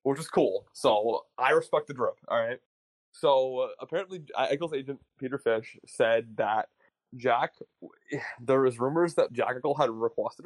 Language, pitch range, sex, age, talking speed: English, 130-185 Hz, male, 20-39, 155 wpm